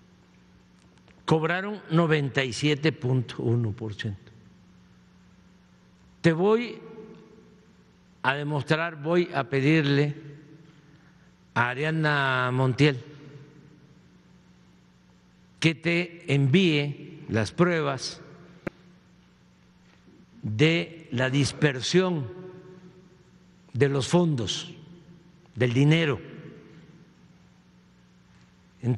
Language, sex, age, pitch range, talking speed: Spanish, male, 50-69, 120-170 Hz, 60 wpm